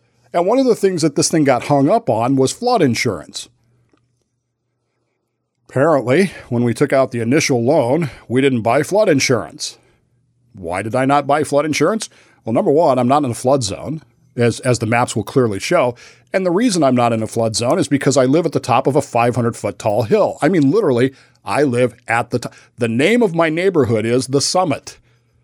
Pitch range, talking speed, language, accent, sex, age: 120-155 Hz, 210 wpm, English, American, male, 50-69